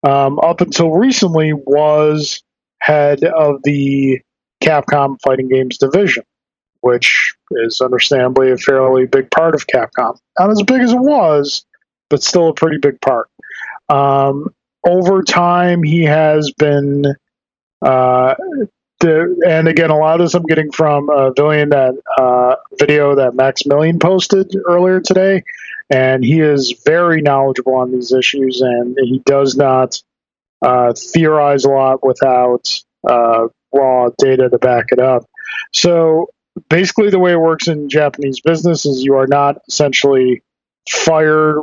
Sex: male